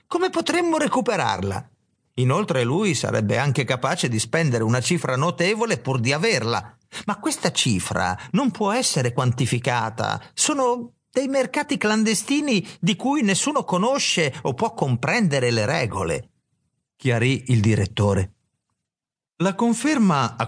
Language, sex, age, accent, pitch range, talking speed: Italian, male, 50-69, native, 120-190 Hz, 125 wpm